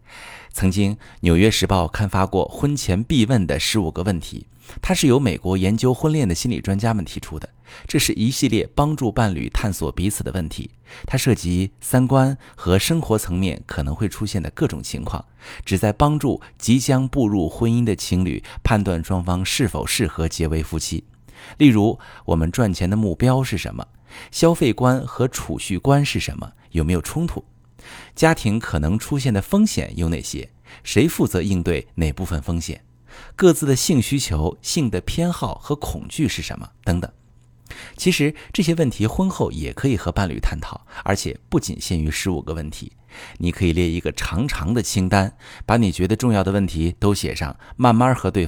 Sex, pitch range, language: male, 90-125 Hz, Chinese